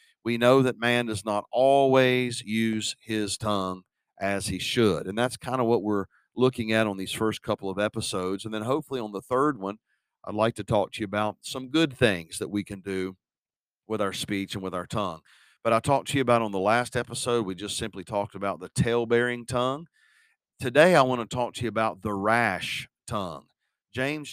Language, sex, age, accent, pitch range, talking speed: English, male, 40-59, American, 105-130 Hz, 210 wpm